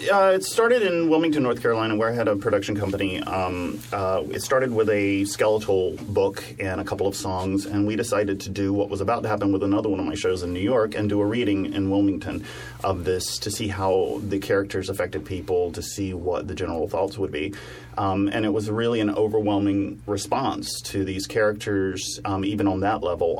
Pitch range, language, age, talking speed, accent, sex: 95-105 Hz, English, 30-49, 215 wpm, American, male